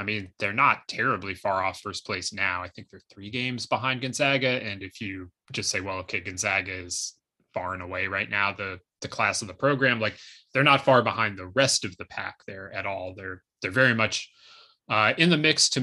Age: 20-39